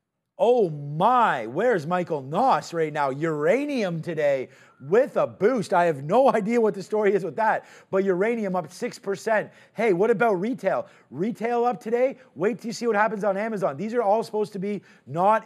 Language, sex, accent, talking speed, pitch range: English, male, American, 185 wpm, 180-225 Hz